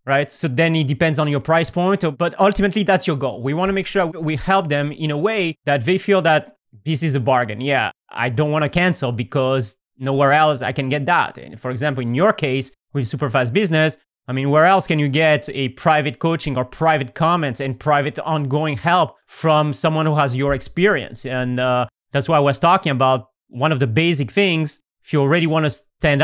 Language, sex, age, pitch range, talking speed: English, male, 30-49, 135-170 Hz, 220 wpm